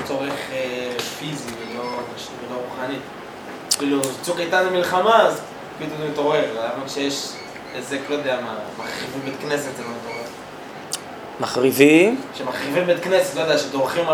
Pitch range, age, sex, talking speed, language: 120-160 Hz, 20-39, male, 125 wpm, Hebrew